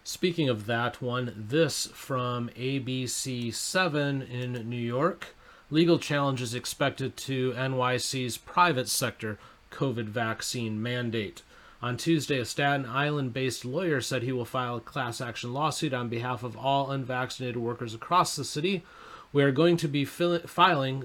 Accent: American